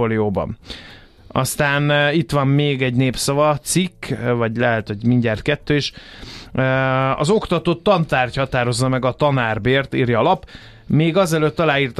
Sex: male